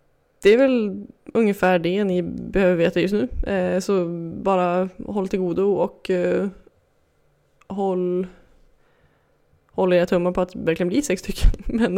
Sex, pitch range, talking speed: female, 180-215 Hz, 135 wpm